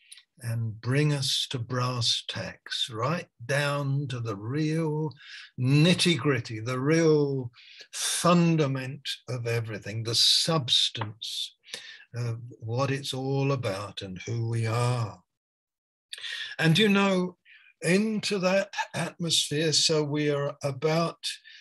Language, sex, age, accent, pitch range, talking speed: English, male, 60-79, British, 125-155 Hz, 110 wpm